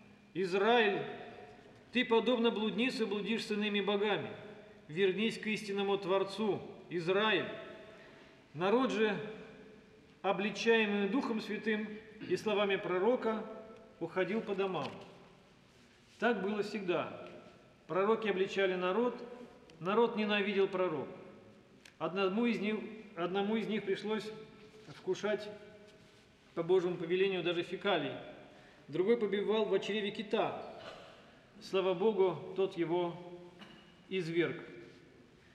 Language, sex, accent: Russian, male, native